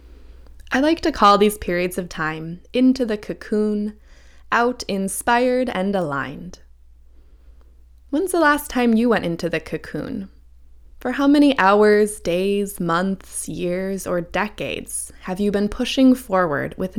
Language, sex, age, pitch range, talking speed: English, female, 20-39, 155-215 Hz, 140 wpm